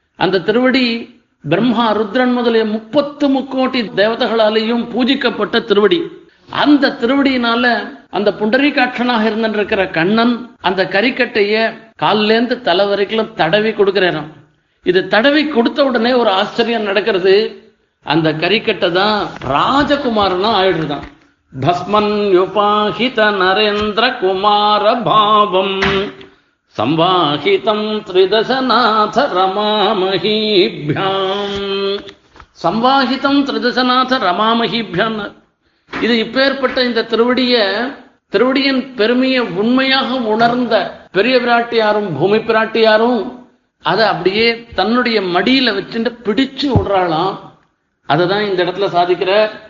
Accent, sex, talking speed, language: native, male, 80 wpm, Tamil